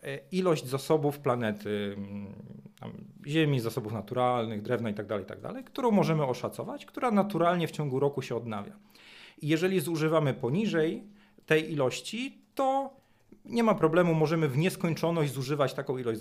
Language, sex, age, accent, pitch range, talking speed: Polish, male, 40-59, native, 115-170 Hz, 135 wpm